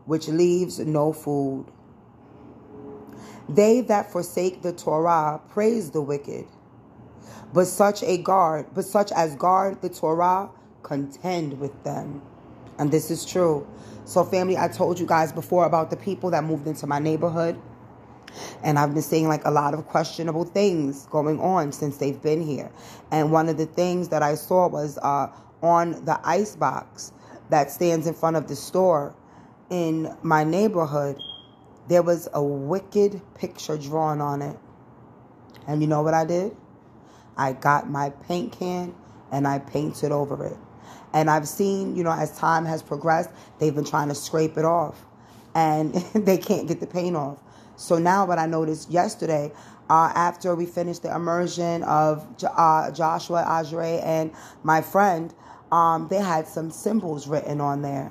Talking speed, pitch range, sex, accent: 165 wpm, 145-175 Hz, female, American